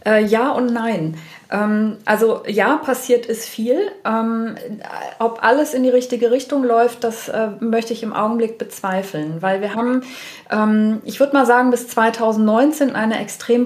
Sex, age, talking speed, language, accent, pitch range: female, 20-39, 165 wpm, German, German, 200-240 Hz